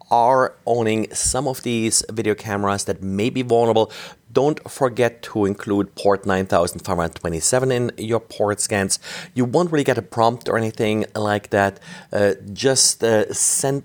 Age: 40-59